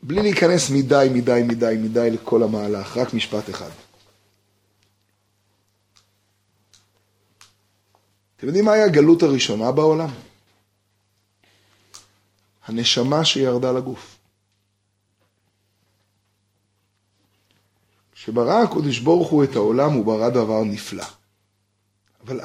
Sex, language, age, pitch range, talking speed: male, Hebrew, 30-49, 100-135 Hz, 85 wpm